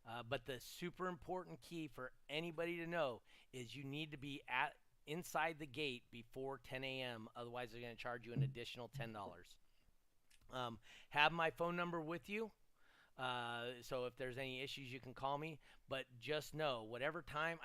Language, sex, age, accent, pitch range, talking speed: English, male, 30-49, American, 125-155 Hz, 180 wpm